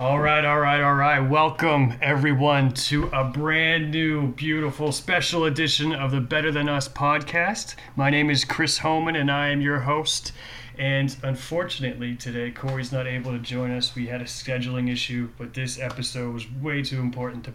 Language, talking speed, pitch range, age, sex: English, 180 wpm, 120-140 Hz, 30-49, male